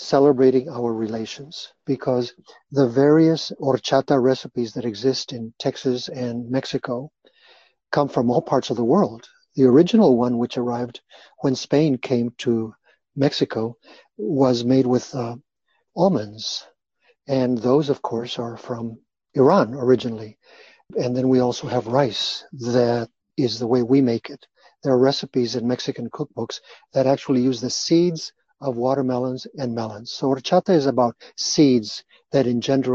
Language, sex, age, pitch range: English, male, 50-69, 120-145 Hz